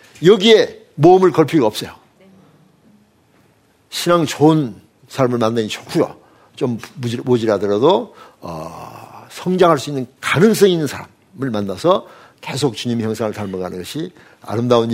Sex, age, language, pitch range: male, 50-69, Korean, 120-180 Hz